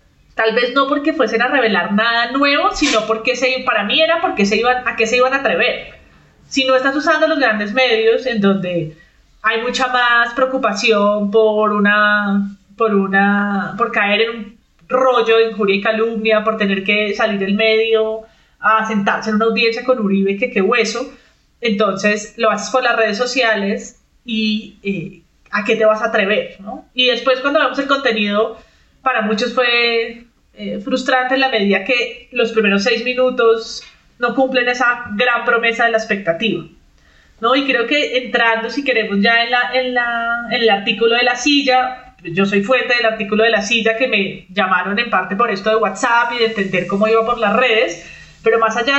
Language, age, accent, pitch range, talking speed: Spanish, 20-39, Colombian, 210-250 Hz, 190 wpm